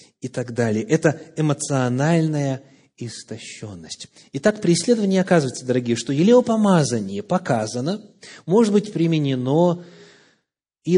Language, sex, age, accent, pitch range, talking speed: Russian, male, 30-49, native, 135-200 Hz, 100 wpm